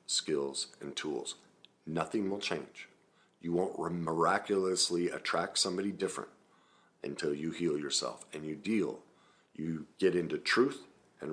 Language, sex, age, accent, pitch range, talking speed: English, male, 50-69, American, 85-105 Hz, 125 wpm